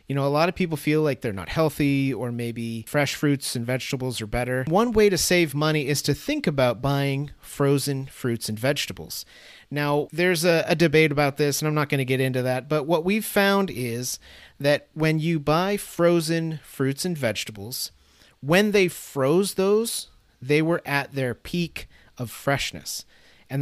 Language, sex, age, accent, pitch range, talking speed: English, male, 30-49, American, 130-160 Hz, 185 wpm